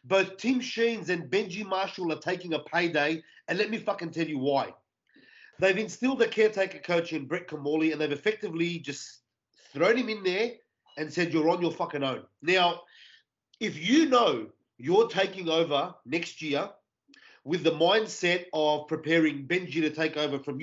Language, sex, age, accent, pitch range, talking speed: English, male, 30-49, Australian, 170-230 Hz, 170 wpm